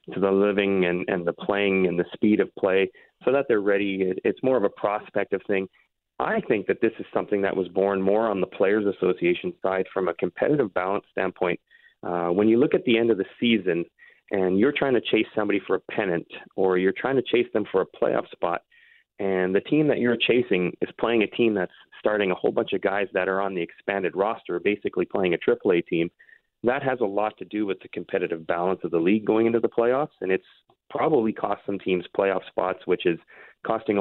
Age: 30-49